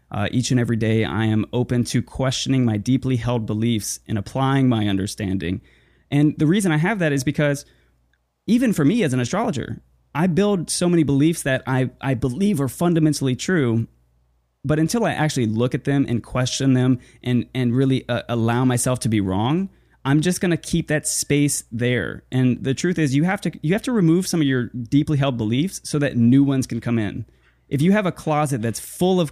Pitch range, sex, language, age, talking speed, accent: 120-155 Hz, male, English, 20-39, 210 wpm, American